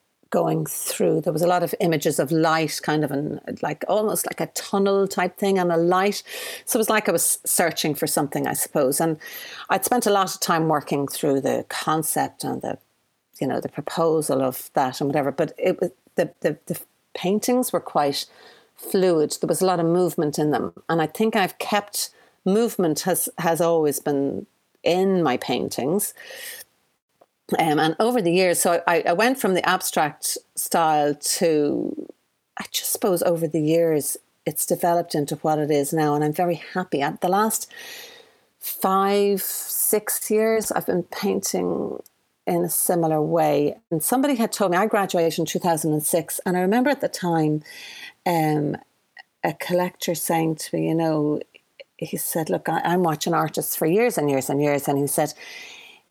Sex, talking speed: female, 180 wpm